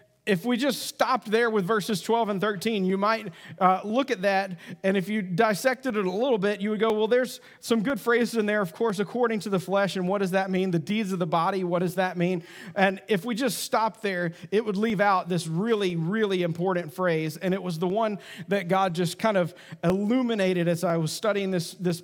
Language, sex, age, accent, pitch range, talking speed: English, male, 40-59, American, 175-215 Hz, 235 wpm